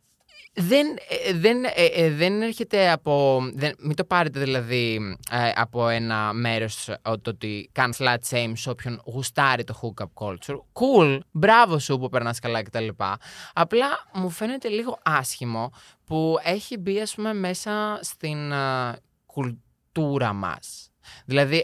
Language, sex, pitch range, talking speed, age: Greek, male, 115-155 Hz, 130 wpm, 20-39